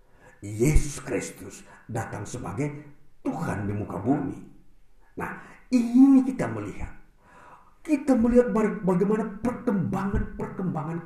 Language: Indonesian